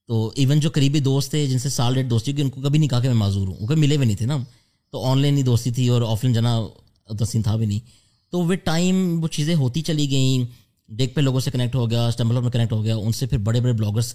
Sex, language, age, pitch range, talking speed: male, Urdu, 20-39, 110-130 Hz, 295 wpm